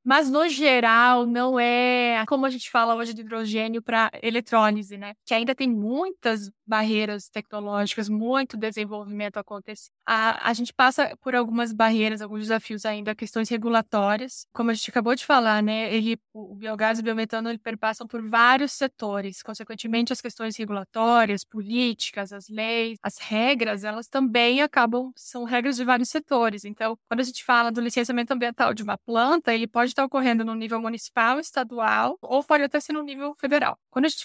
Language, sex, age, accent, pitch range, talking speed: Portuguese, female, 10-29, Brazilian, 220-250 Hz, 175 wpm